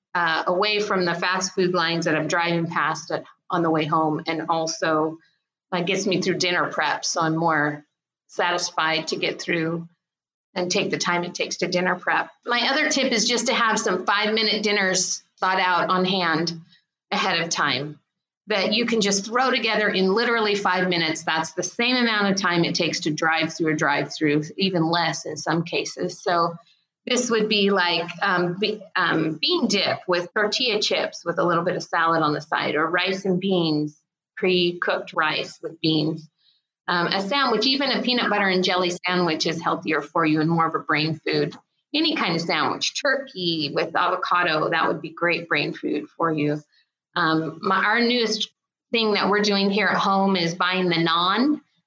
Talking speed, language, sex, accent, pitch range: 190 wpm, English, female, American, 165-205 Hz